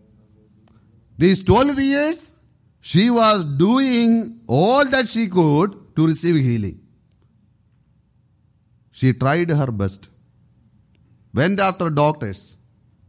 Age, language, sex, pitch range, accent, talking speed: 40-59, English, male, 110-185 Hz, Indian, 90 wpm